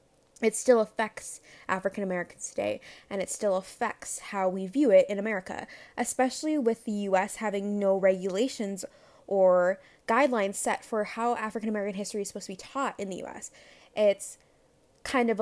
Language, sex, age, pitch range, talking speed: English, female, 20-39, 200-250 Hz, 155 wpm